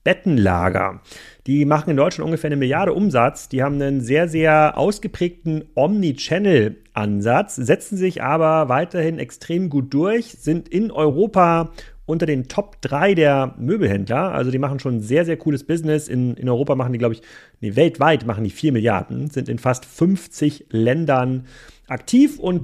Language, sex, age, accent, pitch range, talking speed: German, male, 40-59, German, 125-155 Hz, 160 wpm